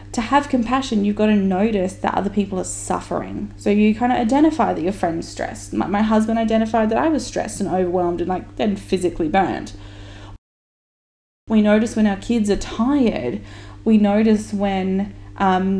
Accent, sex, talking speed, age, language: Australian, female, 180 wpm, 10-29, English